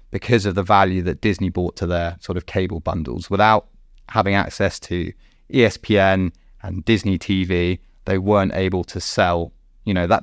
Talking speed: 170 wpm